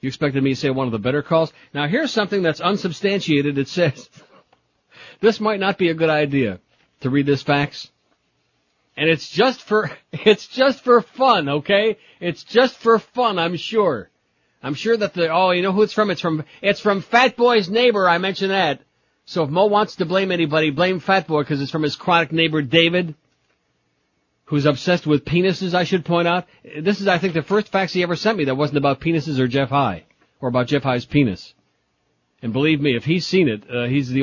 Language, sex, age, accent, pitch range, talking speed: English, male, 60-79, American, 135-185 Hz, 210 wpm